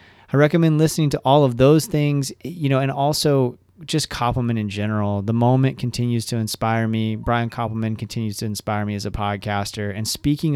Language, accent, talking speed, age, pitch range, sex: English, American, 190 wpm, 30-49, 110-135 Hz, male